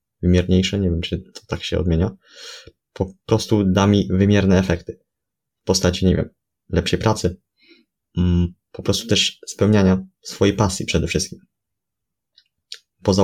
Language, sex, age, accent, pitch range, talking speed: Polish, male, 20-39, native, 90-100 Hz, 130 wpm